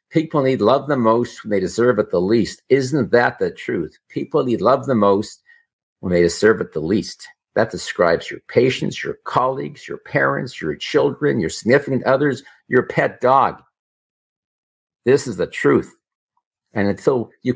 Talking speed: 165 wpm